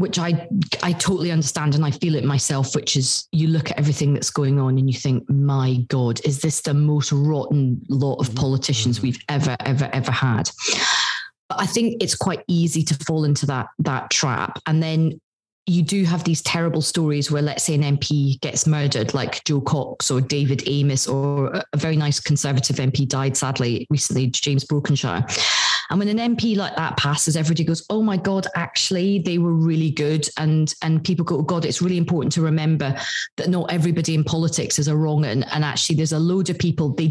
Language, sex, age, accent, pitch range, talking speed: English, female, 30-49, British, 140-170 Hz, 200 wpm